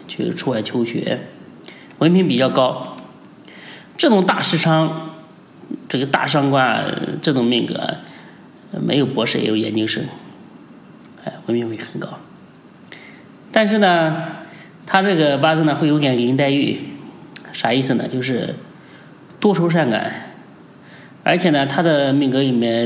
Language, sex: Chinese, male